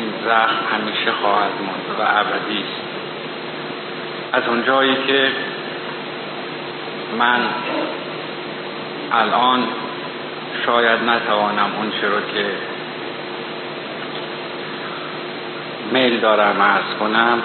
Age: 50-69